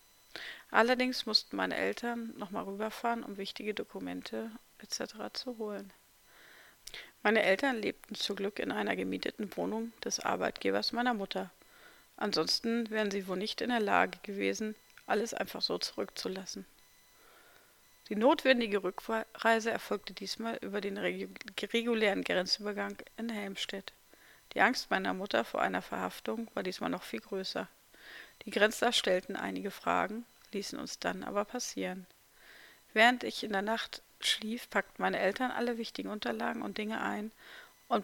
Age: 40-59